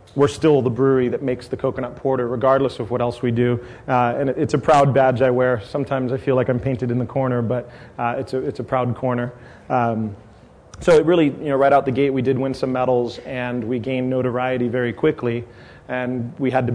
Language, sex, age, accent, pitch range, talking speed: English, male, 30-49, American, 120-130 Hz, 235 wpm